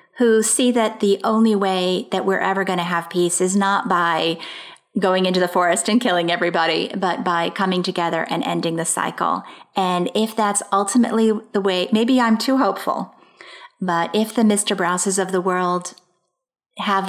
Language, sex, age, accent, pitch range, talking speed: English, female, 30-49, American, 180-215 Hz, 175 wpm